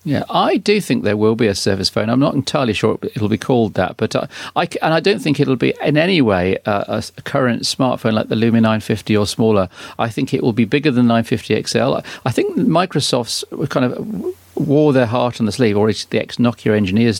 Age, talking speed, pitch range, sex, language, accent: 40-59, 235 wpm, 110-135 Hz, male, English, British